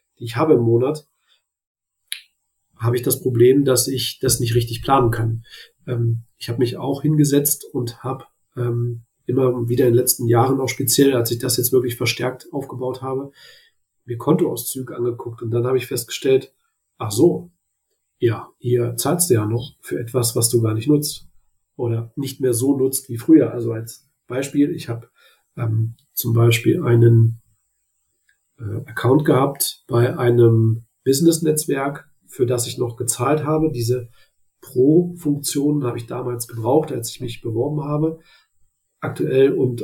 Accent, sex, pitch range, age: German, male, 120-135 Hz, 40-59